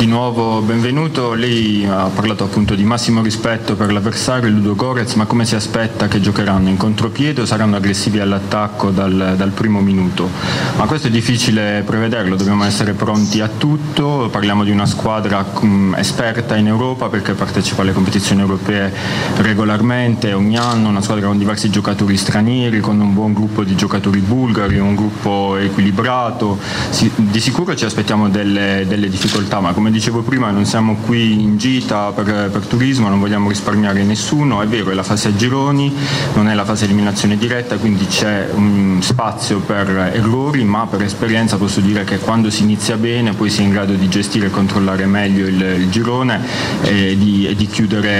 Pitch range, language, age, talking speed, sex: 100-115 Hz, Italian, 20-39, 175 wpm, male